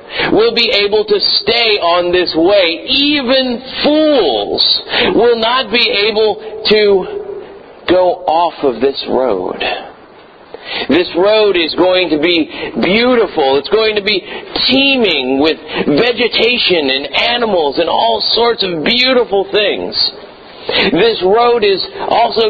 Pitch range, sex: 155-250 Hz, male